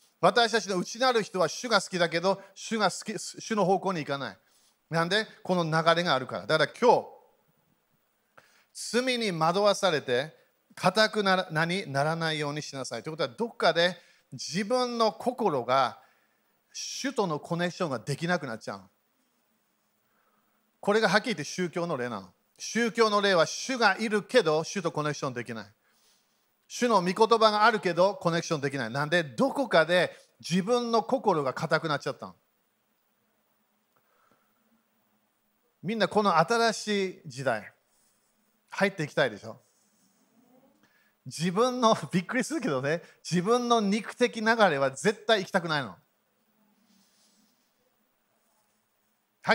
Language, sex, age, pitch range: Japanese, male, 40-59, 165-225 Hz